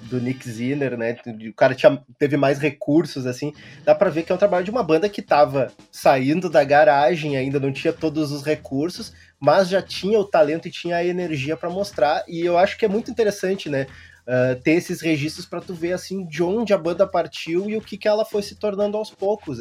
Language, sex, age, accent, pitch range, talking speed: Portuguese, male, 20-39, Brazilian, 135-175 Hz, 225 wpm